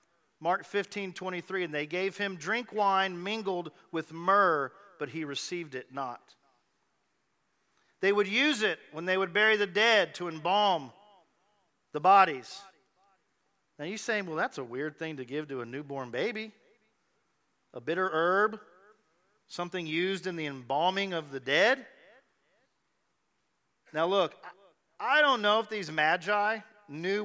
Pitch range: 155-210 Hz